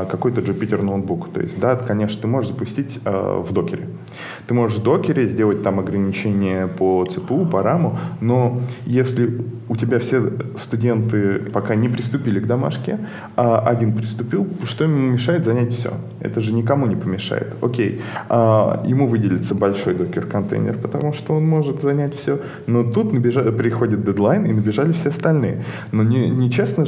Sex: male